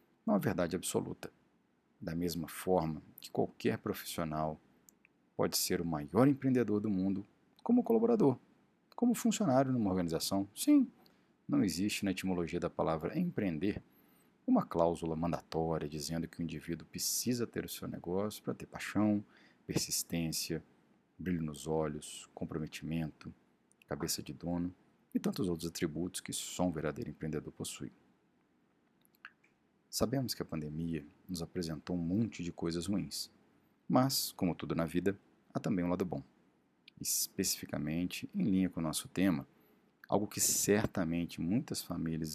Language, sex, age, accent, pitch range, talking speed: Portuguese, male, 50-69, Brazilian, 80-100 Hz, 135 wpm